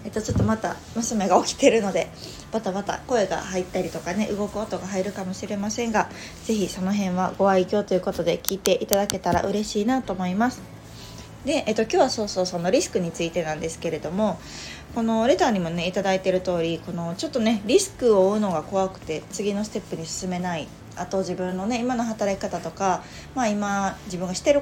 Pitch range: 185-230 Hz